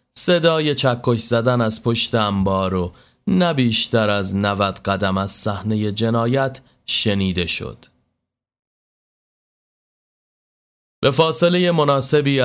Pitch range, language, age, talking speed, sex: 100-135 Hz, Persian, 30-49, 95 wpm, male